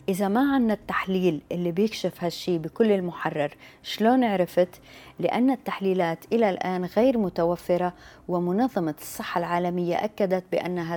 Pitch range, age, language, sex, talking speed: 160-195 Hz, 30-49, Arabic, female, 120 wpm